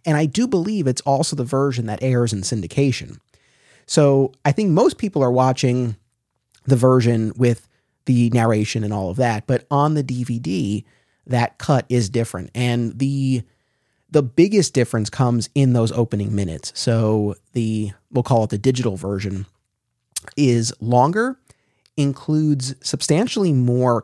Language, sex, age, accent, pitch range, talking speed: English, male, 30-49, American, 115-140 Hz, 145 wpm